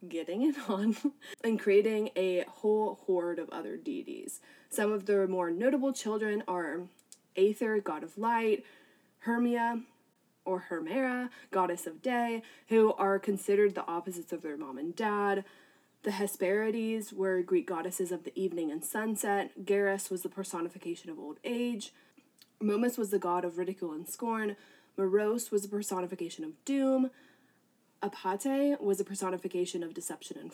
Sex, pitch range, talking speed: female, 185-245 Hz, 150 wpm